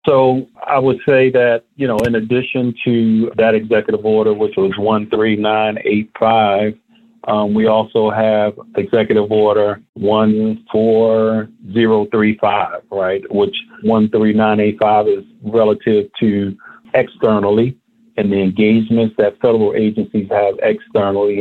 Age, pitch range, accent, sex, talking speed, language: 50-69, 105-130 Hz, American, male, 140 wpm, English